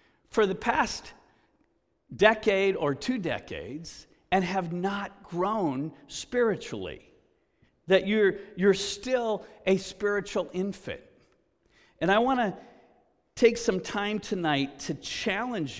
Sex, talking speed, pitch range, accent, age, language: male, 110 wpm, 145-200 Hz, American, 50-69, English